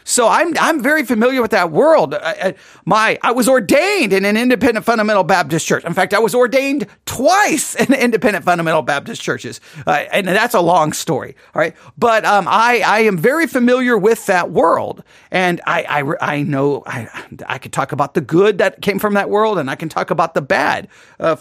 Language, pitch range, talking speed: English, 160-245 Hz, 205 wpm